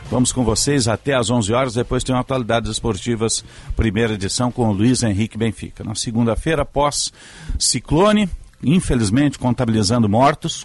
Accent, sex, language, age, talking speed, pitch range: Brazilian, male, Portuguese, 50-69, 135 wpm, 110-130 Hz